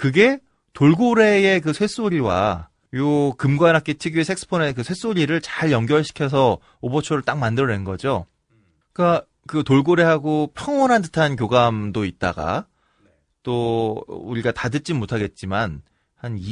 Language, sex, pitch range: Korean, male, 110-160 Hz